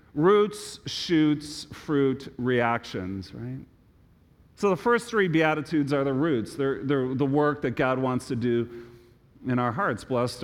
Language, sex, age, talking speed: English, male, 40-59, 150 wpm